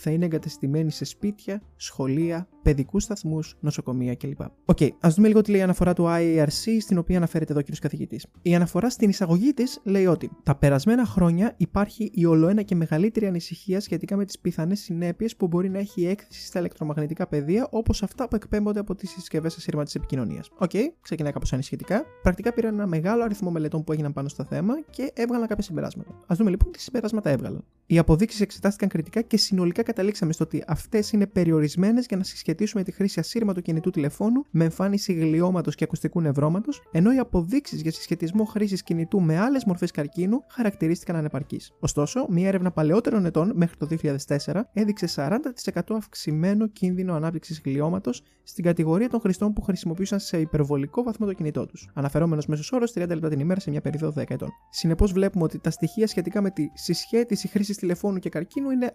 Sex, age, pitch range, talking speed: male, 20-39, 160-210 Hz, 190 wpm